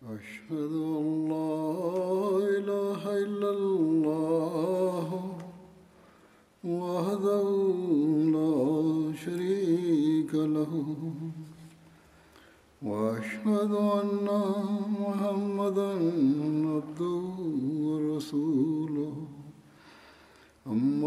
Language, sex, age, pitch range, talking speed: Turkish, male, 60-79, 155-195 Hz, 35 wpm